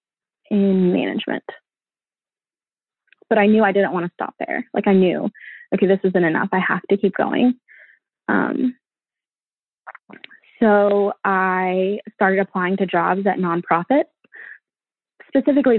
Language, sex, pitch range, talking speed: English, female, 190-220 Hz, 125 wpm